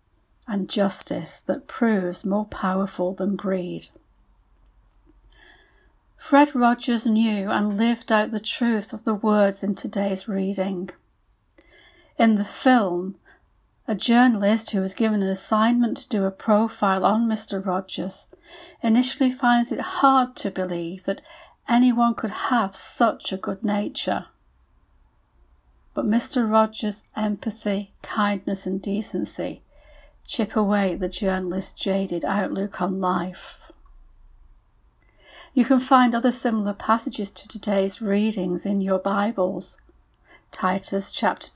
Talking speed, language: 120 wpm, English